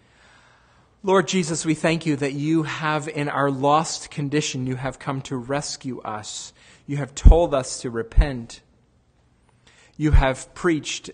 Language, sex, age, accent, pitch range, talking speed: English, male, 40-59, American, 115-145 Hz, 145 wpm